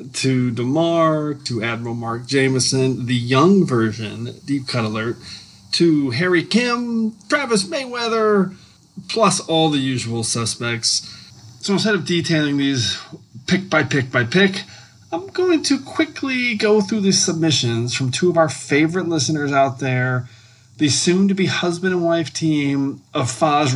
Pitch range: 120-165 Hz